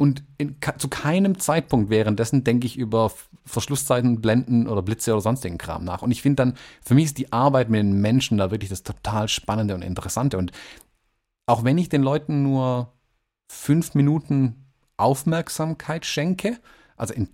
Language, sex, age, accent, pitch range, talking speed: German, male, 30-49, German, 110-140 Hz, 170 wpm